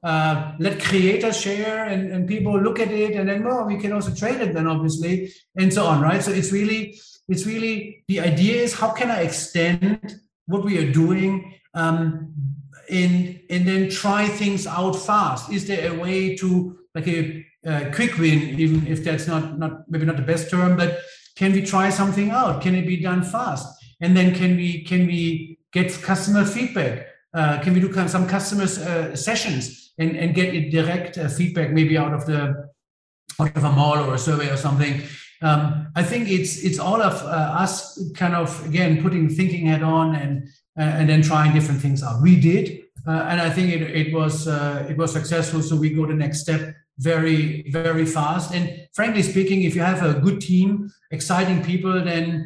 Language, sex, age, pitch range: Thai, male, 50-69, 155-190 Hz